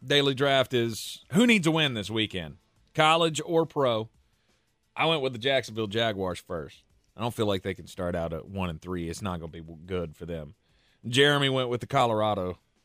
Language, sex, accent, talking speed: English, male, American, 205 wpm